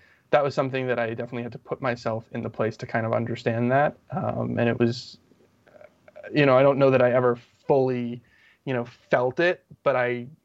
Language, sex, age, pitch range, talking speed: English, male, 20-39, 115-125 Hz, 210 wpm